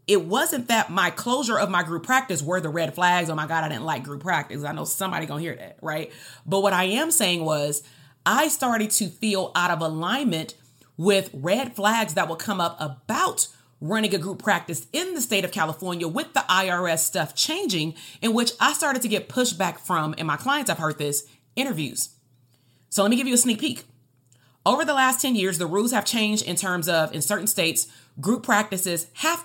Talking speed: 215 wpm